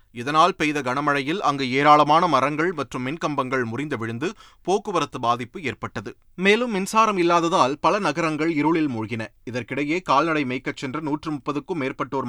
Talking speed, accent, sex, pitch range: 130 wpm, native, male, 125-175 Hz